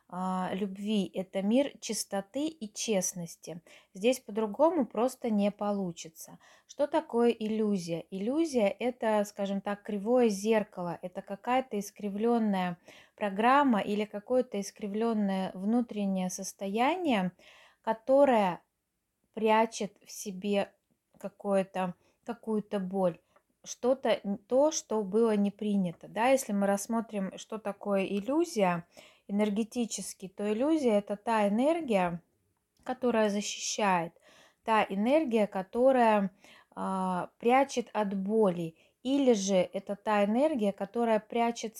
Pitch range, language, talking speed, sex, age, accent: 195-235 Hz, Russian, 100 wpm, female, 20-39, native